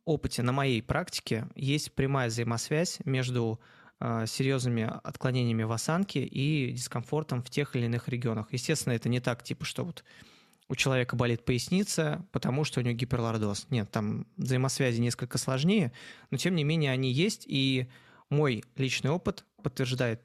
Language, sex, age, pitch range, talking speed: Russian, male, 20-39, 120-150 Hz, 150 wpm